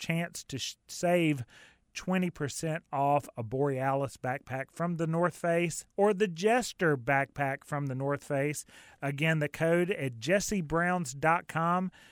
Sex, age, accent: male, 30-49, American